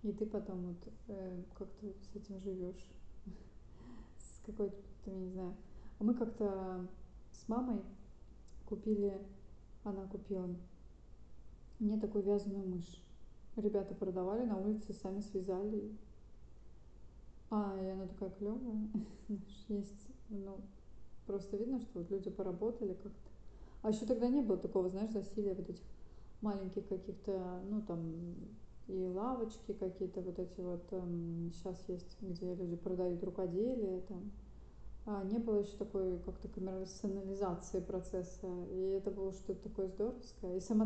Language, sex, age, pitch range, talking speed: Russian, female, 20-39, 185-210 Hz, 130 wpm